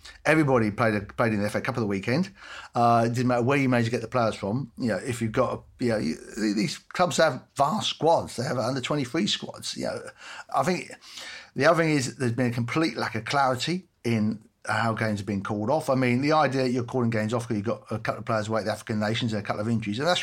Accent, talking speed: British, 275 wpm